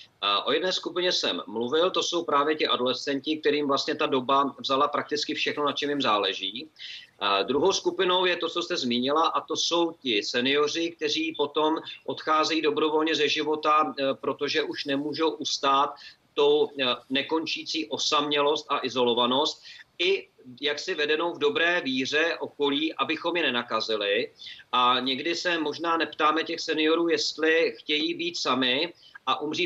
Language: Czech